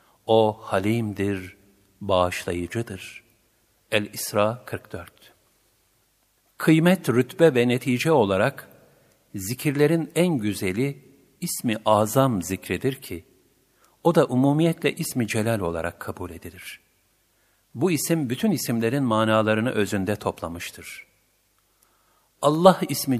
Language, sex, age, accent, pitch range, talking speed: Turkish, male, 50-69, native, 100-145 Hz, 90 wpm